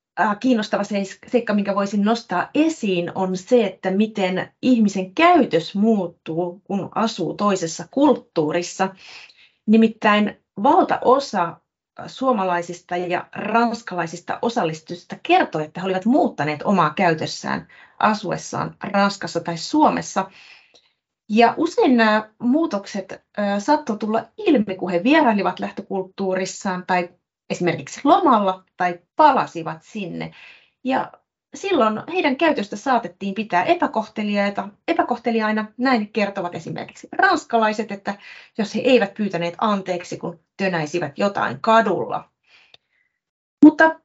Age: 30-49